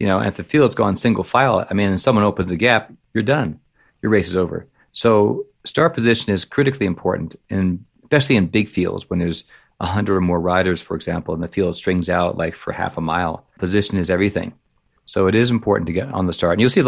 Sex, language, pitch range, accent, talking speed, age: male, English, 90-115 Hz, American, 235 wpm, 40-59